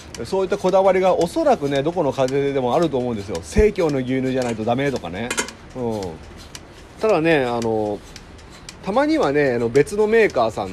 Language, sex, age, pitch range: Japanese, male, 40-59, 110-165 Hz